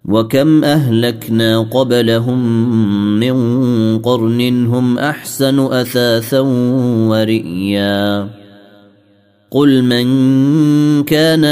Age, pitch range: 30-49, 105-130 Hz